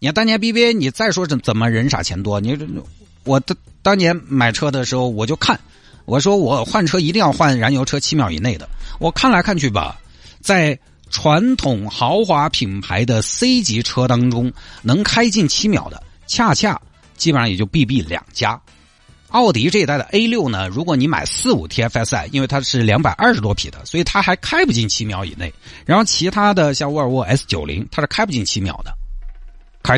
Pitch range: 100-160 Hz